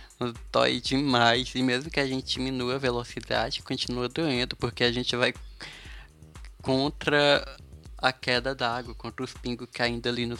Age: 20-39